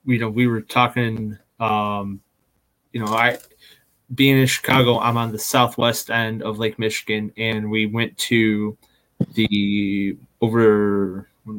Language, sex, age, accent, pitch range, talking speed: English, male, 20-39, American, 105-125 Hz, 140 wpm